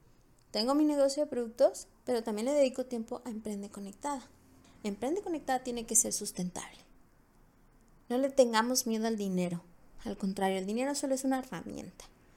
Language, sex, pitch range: Spanish, female, 200-250 Hz